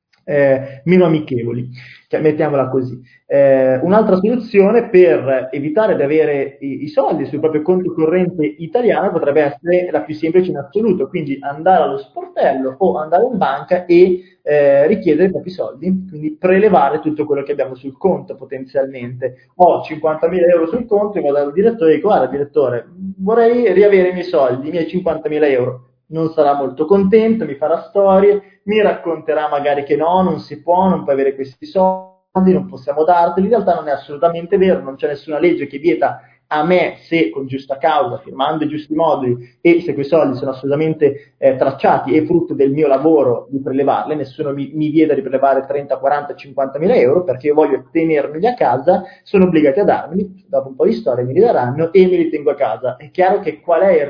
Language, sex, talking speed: Italian, male, 190 wpm